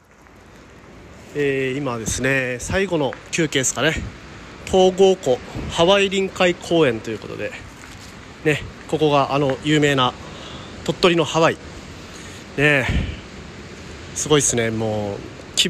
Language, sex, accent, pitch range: Japanese, male, native, 105-145 Hz